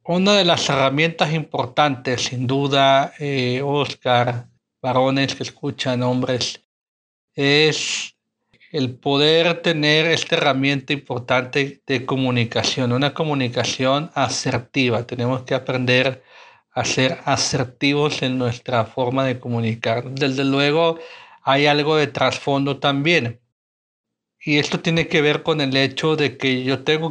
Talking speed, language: 120 wpm, Spanish